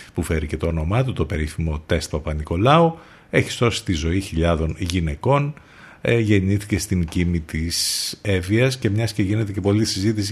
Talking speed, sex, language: 165 wpm, male, Greek